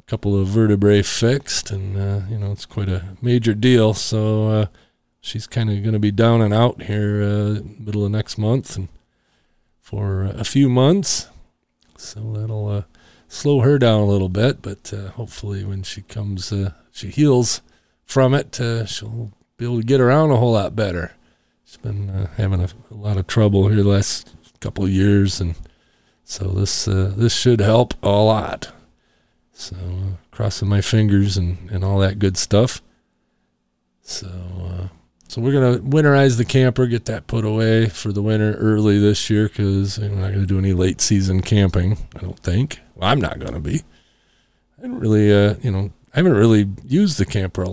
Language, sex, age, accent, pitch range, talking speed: English, male, 40-59, American, 95-115 Hz, 195 wpm